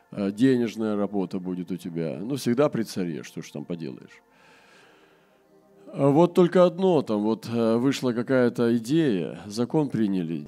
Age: 40-59